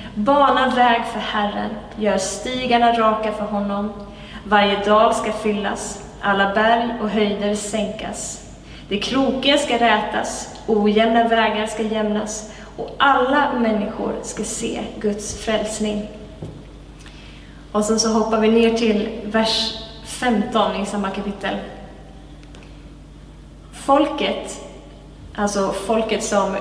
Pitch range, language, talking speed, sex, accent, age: 205-230 Hz, Swedish, 110 wpm, female, native, 20-39